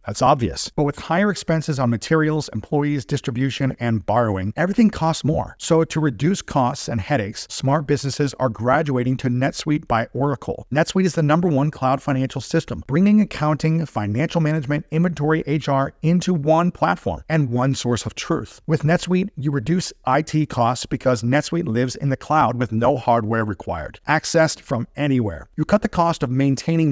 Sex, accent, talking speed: male, American, 170 wpm